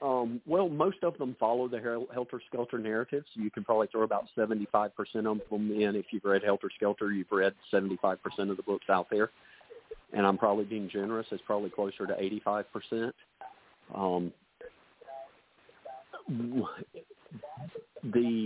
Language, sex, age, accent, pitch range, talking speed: English, male, 40-59, American, 95-110 Hz, 145 wpm